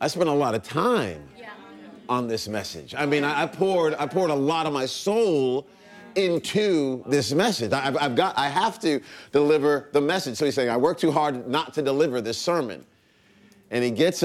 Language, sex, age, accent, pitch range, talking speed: English, male, 40-59, American, 115-155 Hz, 200 wpm